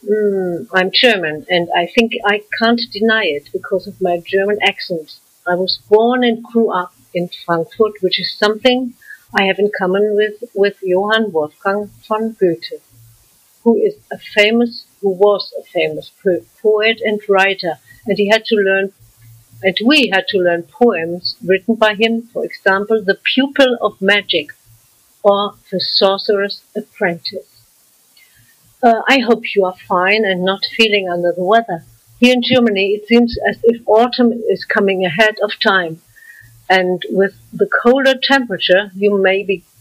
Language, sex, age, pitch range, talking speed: English, female, 60-79, 180-225 Hz, 155 wpm